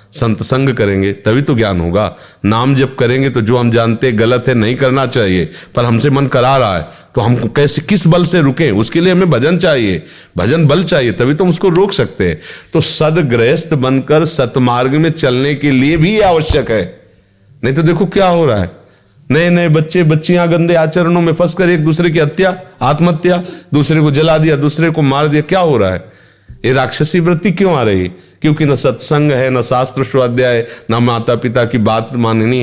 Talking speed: 200 wpm